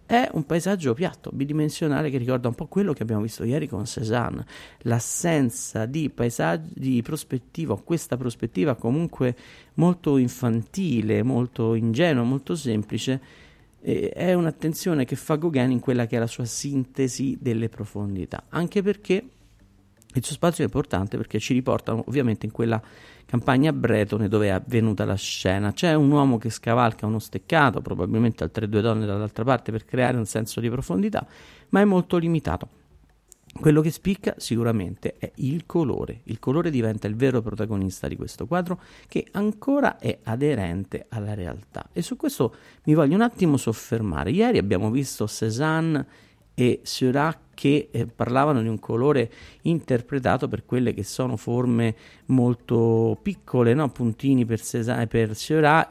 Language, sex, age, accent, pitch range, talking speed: Italian, male, 50-69, native, 110-145 Hz, 150 wpm